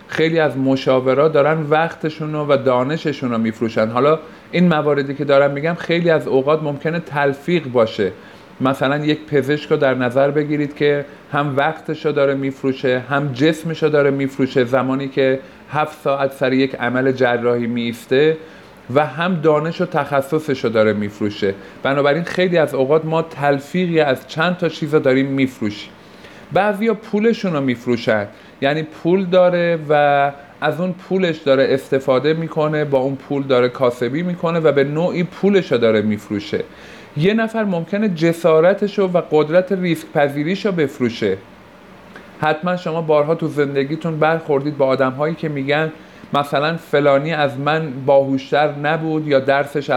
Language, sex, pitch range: Persian, male, 135-160 Hz